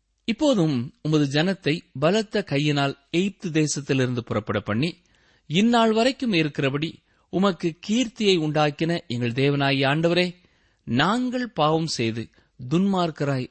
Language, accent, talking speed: Tamil, native, 95 wpm